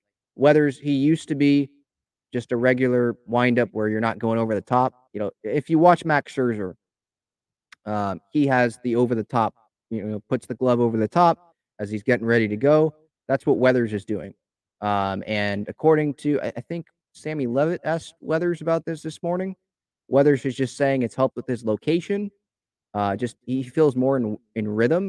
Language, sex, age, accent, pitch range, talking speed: English, male, 20-39, American, 115-150 Hz, 190 wpm